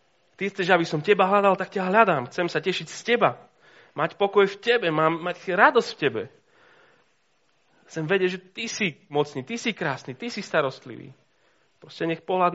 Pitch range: 135-190 Hz